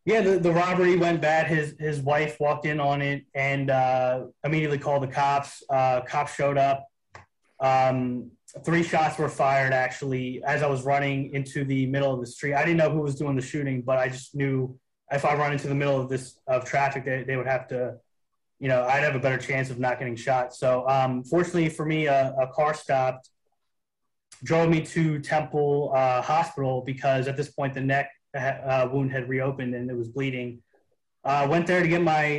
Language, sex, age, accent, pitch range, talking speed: English, male, 20-39, American, 130-150 Hz, 210 wpm